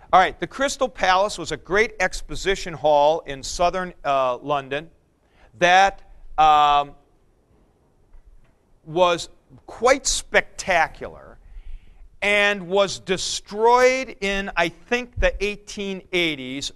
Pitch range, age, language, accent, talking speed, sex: 140-195 Hz, 50-69, English, American, 95 wpm, male